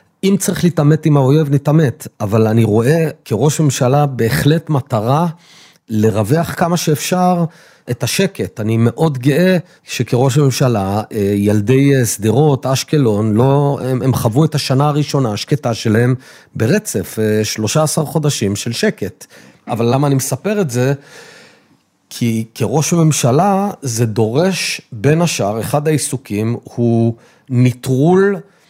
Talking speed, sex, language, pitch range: 120 wpm, male, Hebrew, 115-150 Hz